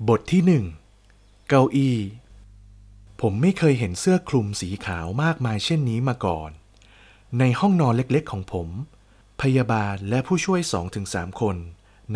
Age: 20-39